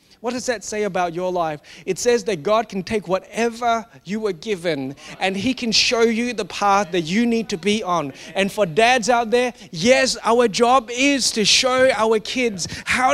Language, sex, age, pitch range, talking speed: English, male, 30-49, 205-265 Hz, 200 wpm